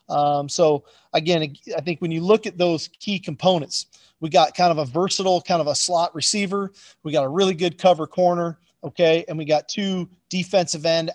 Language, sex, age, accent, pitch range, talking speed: English, male, 40-59, American, 155-180 Hz, 200 wpm